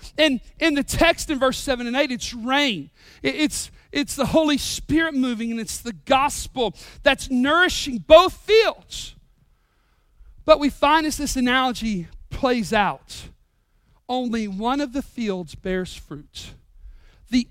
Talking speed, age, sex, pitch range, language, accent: 140 wpm, 40-59, male, 240-340 Hz, English, American